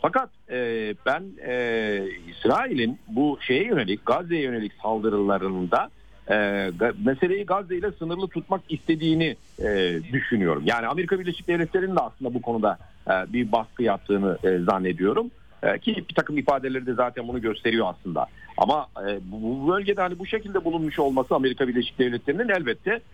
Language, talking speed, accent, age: Turkish, 125 wpm, native, 50-69